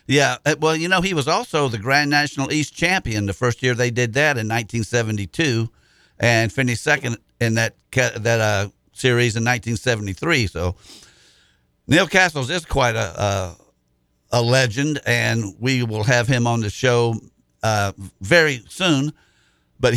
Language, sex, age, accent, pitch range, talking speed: English, male, 50-69, American, 110-135 Hz, 155 wpm